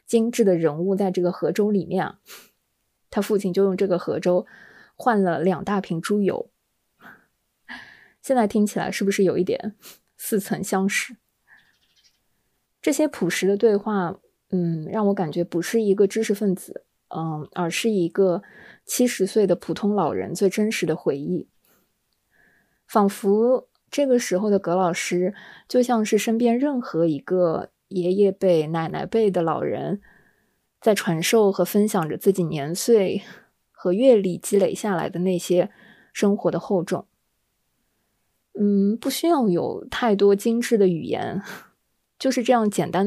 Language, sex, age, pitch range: Chinese, female, 20-39, 180-215 Hz